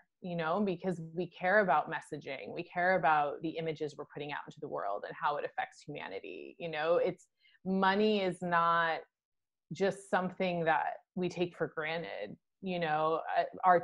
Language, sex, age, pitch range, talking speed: English, female, 20-39, 160-195 Hz, 170 wpm